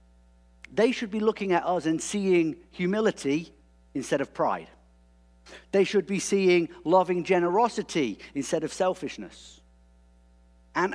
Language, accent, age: English, British, 50-69